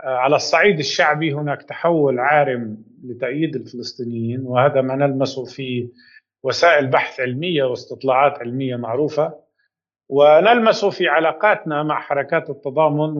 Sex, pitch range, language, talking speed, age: male, 130-160 Hz, Arabic, 110 wpm, 50-69